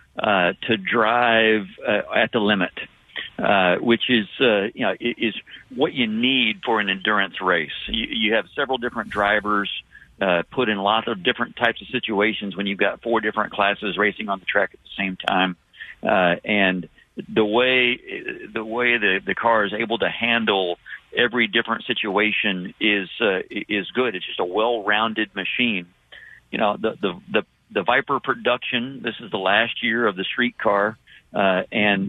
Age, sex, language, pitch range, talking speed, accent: 50-69, male, English, 95-115 Hz, 175 wpm, American